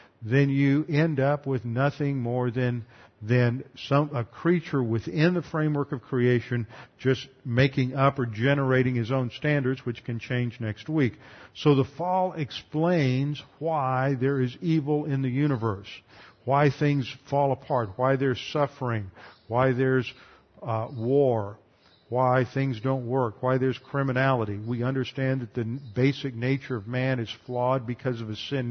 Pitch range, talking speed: 120-140 Hz, 155 wpm